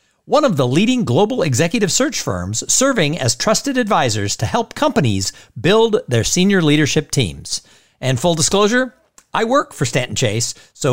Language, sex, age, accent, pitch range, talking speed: English, male, 50-69, American, 125-200 Hz, 160 wpm